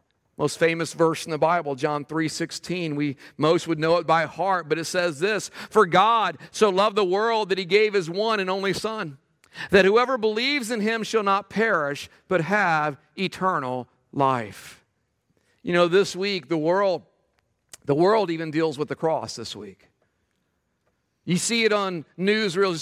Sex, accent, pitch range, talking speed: male, American, 165-230 Hz, 175 wpm